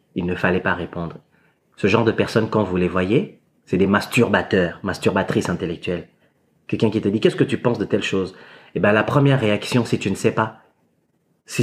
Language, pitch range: French, 110-135 Hz